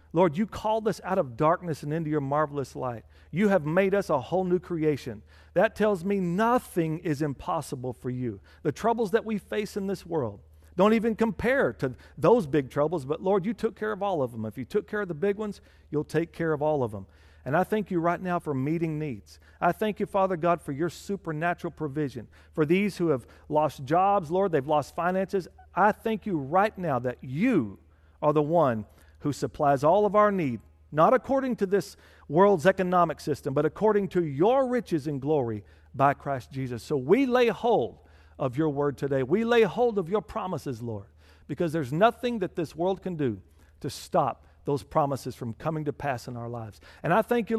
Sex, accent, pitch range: male, American, 140-210 Hz